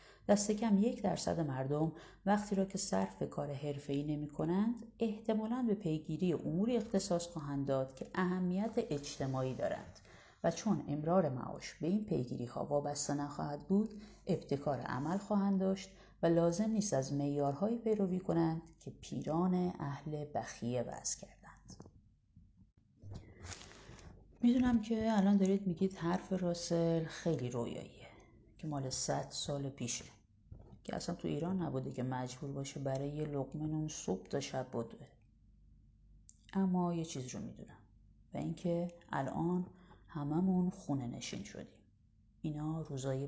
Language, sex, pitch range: Persian, female, 130-185 Hz